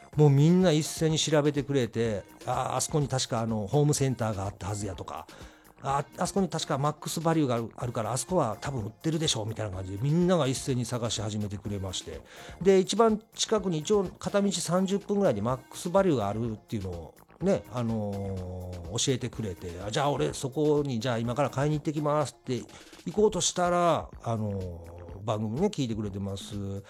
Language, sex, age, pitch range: Japanese, male, 50-69, 110-160 Hz